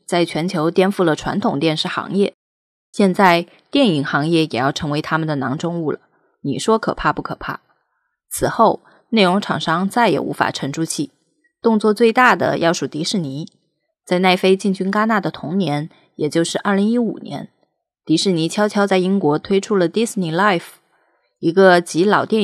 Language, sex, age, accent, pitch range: Chinese, female, 20-39, native, 160-210 Hz